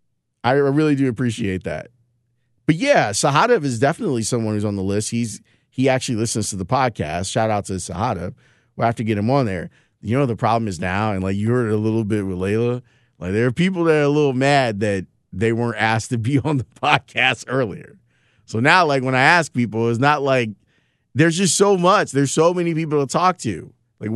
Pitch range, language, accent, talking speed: 110-150 Hz, English, American, 225 wpm